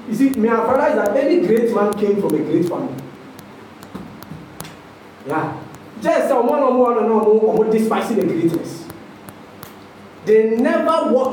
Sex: male